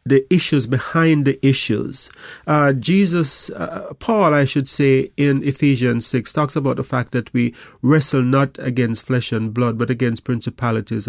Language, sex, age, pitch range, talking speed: English, male, 30-49, 120-140 Hz, 160 wpm